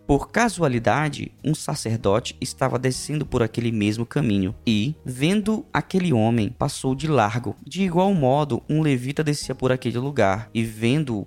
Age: 20-39